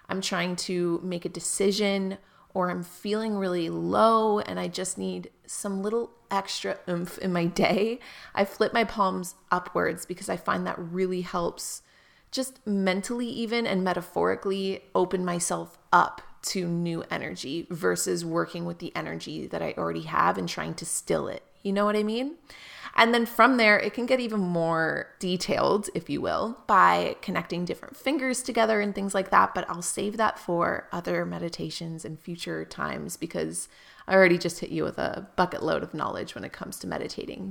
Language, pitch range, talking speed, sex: English, 175-215 Hz, 180 wpm, female